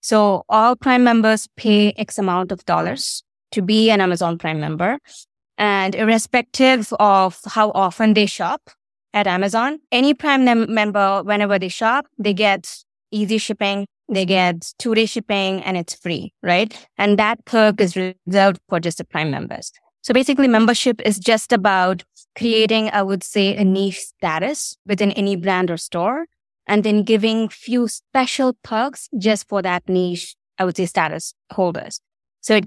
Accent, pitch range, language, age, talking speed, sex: Indian, 185-220 Hz, English, 20-39, 160 wpm, female